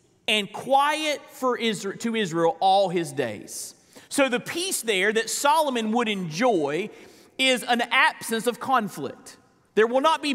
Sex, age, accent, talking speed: male, 40-59, American, 140 wpm